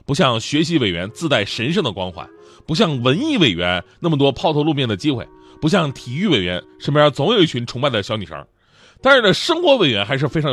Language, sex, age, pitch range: Chinese, male, 30-49, 125-200 Hz